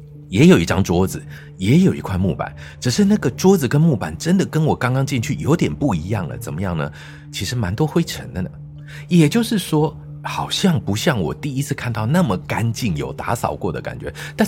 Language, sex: Chinese, male